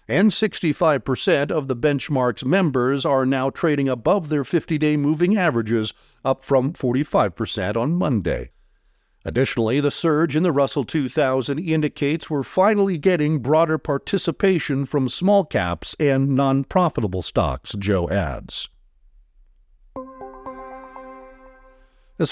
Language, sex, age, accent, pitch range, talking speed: English, male, 50-69, American, 120-160 Hz, 110 wpm